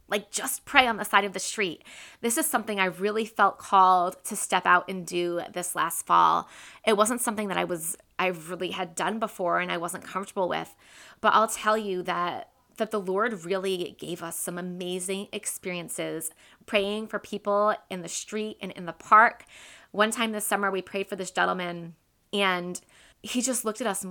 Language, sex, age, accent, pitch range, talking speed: English, female, 20-39, American, 185-215 Hz, 200 wpm